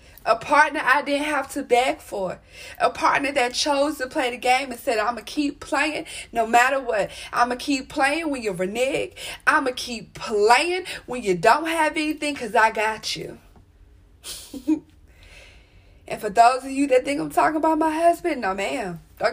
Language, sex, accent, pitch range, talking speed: English, female, American, 185-285 Hz, 225 wpm